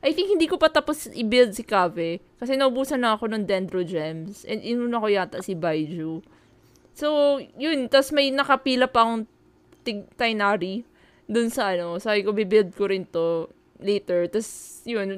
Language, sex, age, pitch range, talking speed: Filipino, female, 20-39, 210-275 Hz, 175 wpm